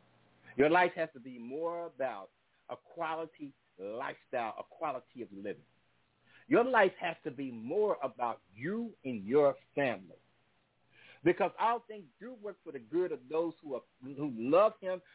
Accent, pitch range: American, 145-220 Hz